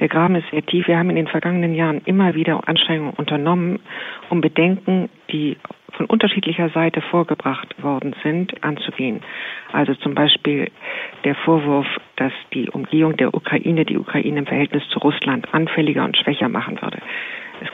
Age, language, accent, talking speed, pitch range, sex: 50-69, German, German, 160 wpm, 150-170 Hz, female